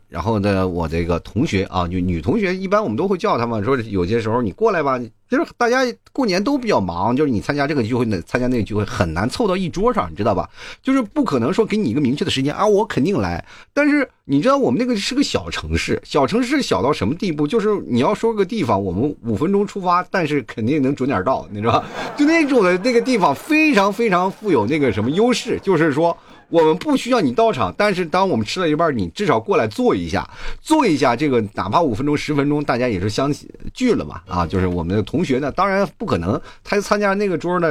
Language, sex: Chinese, male